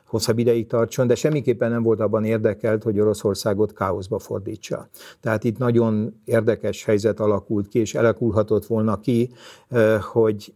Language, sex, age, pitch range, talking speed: Hungarian, male, 50-69, 105-120 Hz, 140 wpm